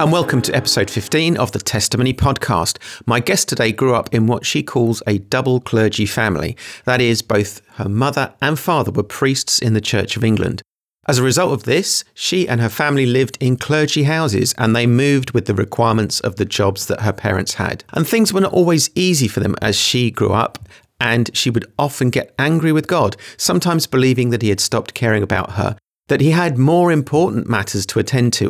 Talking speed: 210 wpm